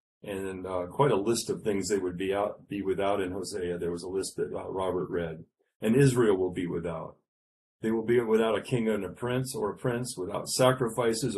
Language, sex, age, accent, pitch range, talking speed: English, male, 40-59, American, 90-120 Hz, 220 wpm